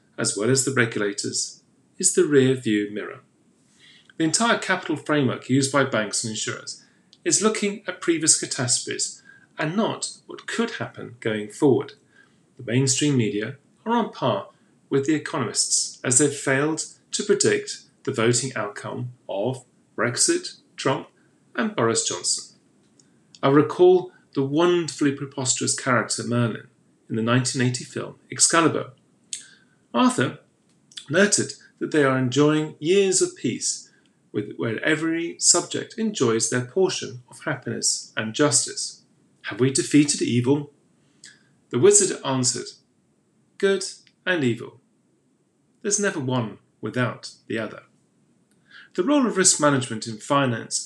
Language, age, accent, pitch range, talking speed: English, 40-59, British, 125-180 Hz, 125 wpm